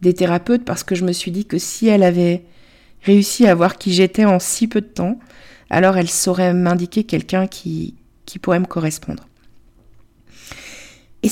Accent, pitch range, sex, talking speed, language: French, 120-200 Hz, female, 175 wpm, French